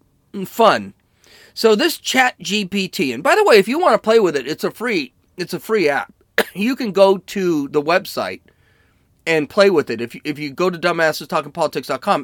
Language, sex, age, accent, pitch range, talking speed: English, male, 40-59, American, 145-205 Hz, 195 wpm